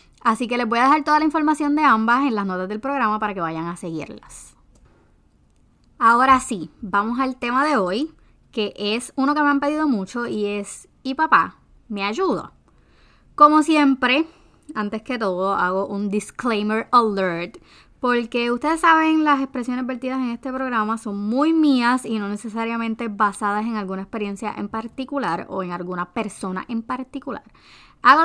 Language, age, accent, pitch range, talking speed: Spanish, 20-39, American, 205-265 Hz, 170 wpm